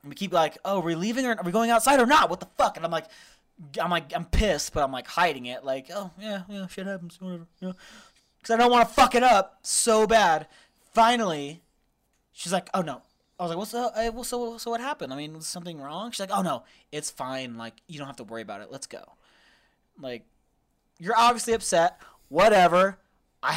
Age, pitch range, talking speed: 20-39, 155-230 Hz, 230 wpm